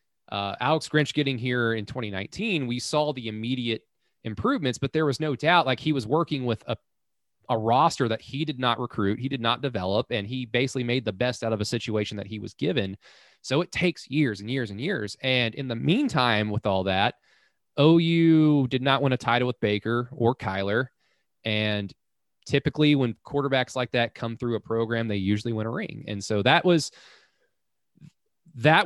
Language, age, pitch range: English, 20-39, 110-150 Hz